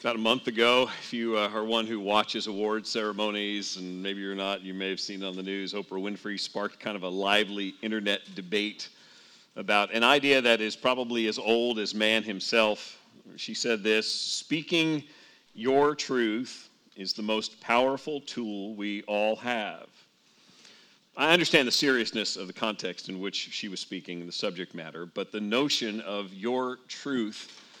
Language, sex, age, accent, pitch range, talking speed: English, male, 40-59, American, 100-125 Hz, 170 wpm